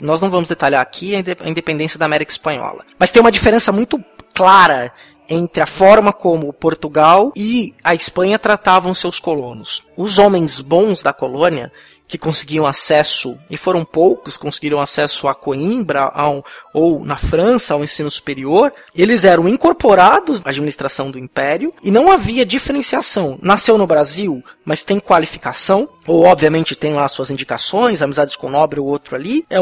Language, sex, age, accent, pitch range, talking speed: Portuguese, male, 20-39, Brazilian, 150-210 Hz, 160 wpm